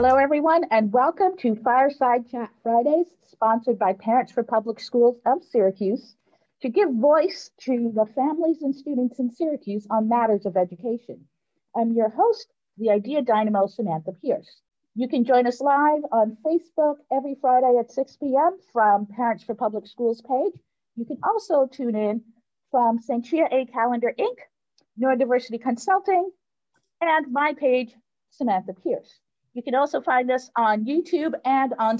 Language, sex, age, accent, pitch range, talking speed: English, female, 50-69, American, 220-275 Hz, 155 wpm